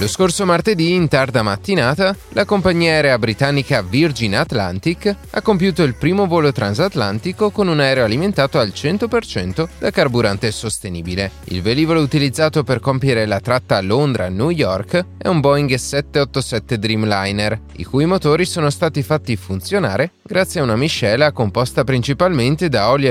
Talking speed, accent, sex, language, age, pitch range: 150 wpm, native, male, Italian, 30-49, 105-160 Hz